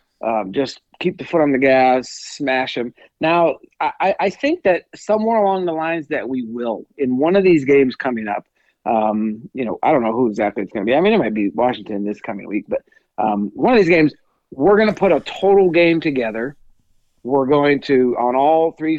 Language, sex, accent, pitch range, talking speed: English, male, American, 115-155 Hz, 220 wpm